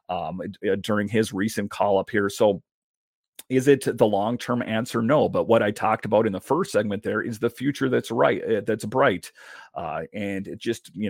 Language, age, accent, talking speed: English, 40-59, American, 190 wpm